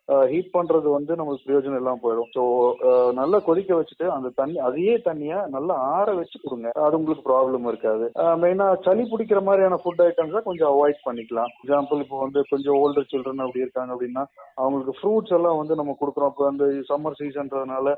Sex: male